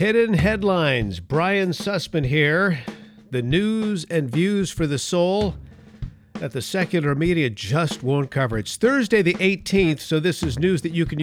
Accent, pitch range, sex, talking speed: American, 120-170 Hz, male, 160 wpm